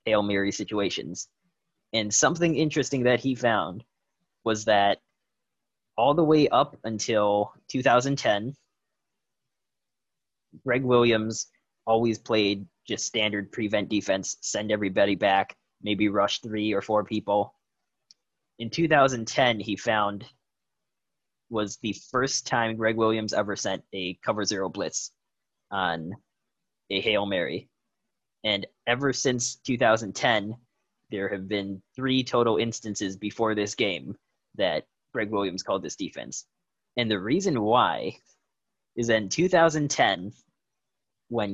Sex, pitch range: male, 105-125 Hz